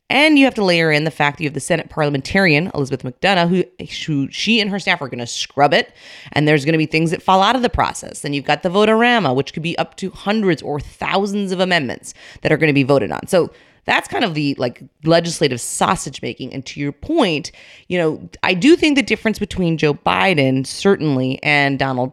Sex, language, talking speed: female, English, 235 wpm